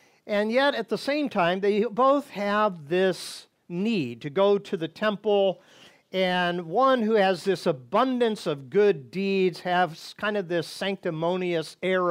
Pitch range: 165-210 Hz